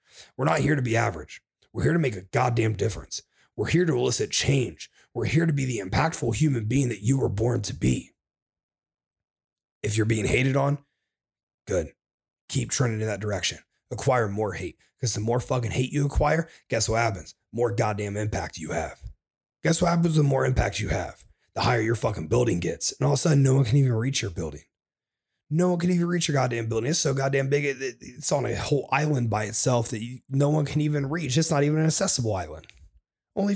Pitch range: 110-140 Hz